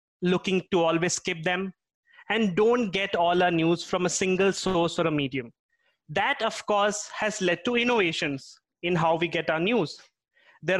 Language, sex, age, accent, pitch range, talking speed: English, male, 20-39, Indian, 180-220 Hz, 180 wpm